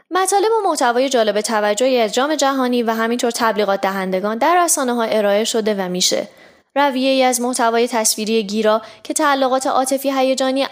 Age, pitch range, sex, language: 20-39, 210-275 Hz, female, Persian